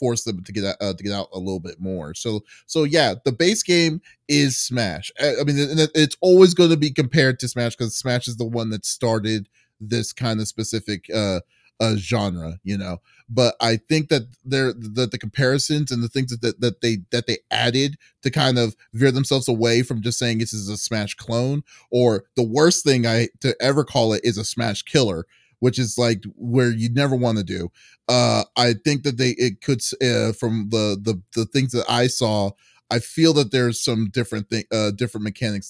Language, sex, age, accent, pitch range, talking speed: English, male, 30-49, American, 100-130 Hz, 215 wpm